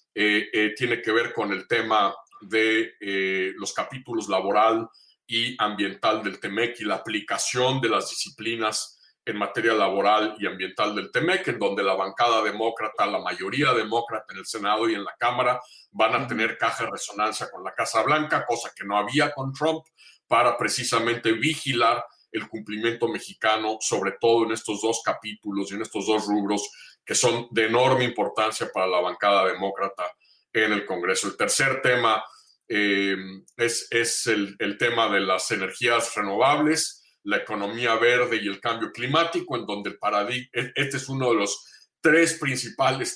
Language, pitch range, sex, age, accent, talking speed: Spanish, 105-130 Hz, male, 50-69, Mexican, 165 wpm